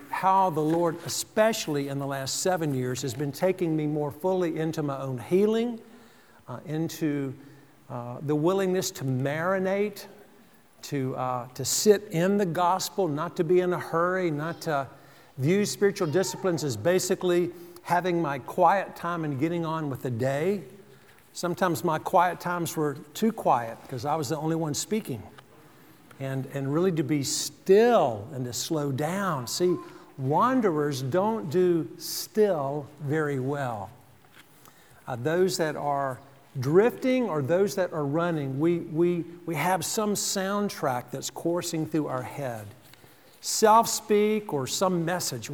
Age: 50-69